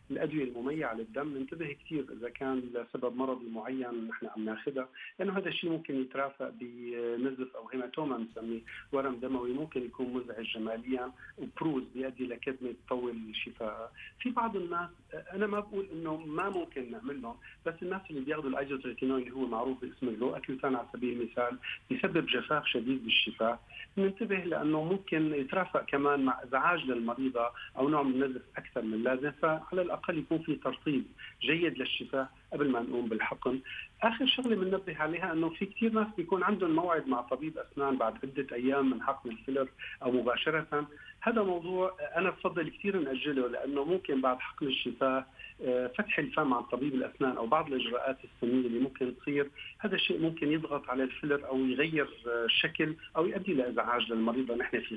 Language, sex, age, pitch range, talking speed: Arabic, male, 50-69, 125-160 Hz, 160 wpm